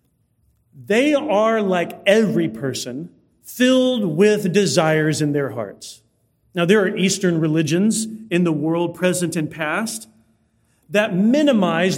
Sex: male